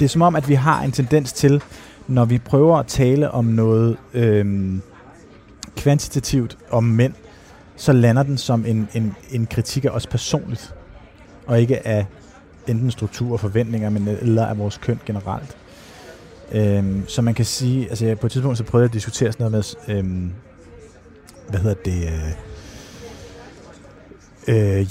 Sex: male